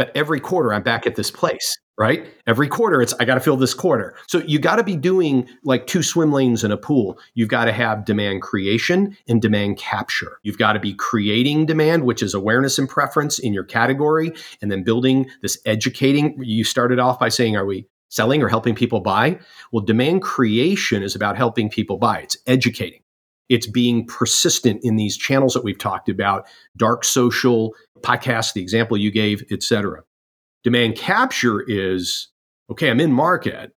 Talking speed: 190 wpm